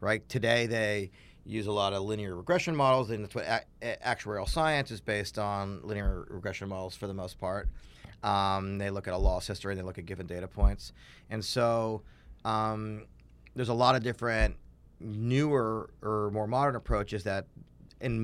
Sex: male